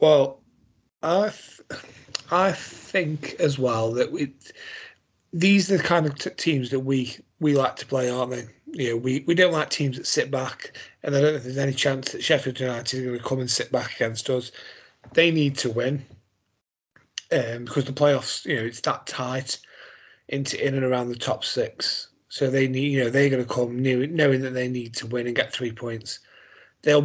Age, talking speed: 30-49, 210 wpm